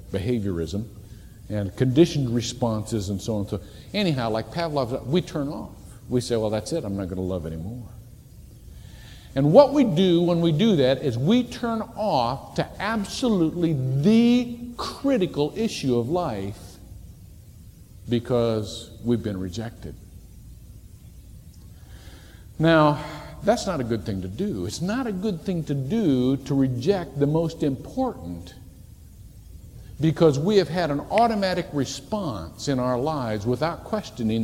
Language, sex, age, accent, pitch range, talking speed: English, male, 50-69, American, 95-140 Hz, 145 wpm